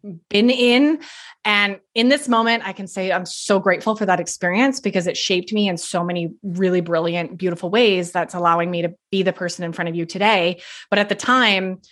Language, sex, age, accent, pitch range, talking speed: English, female, 20-39, American, 180-225 Hz, 210 wpm